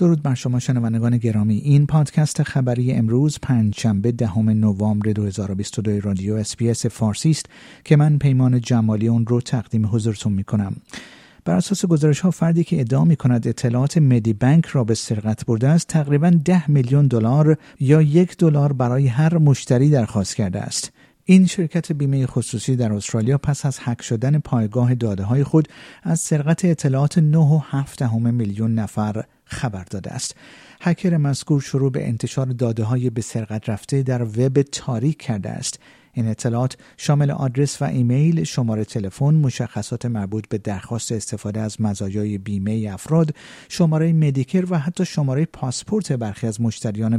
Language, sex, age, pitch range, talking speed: Persian, male, 50-69, 110-150 Hz, 155 wpm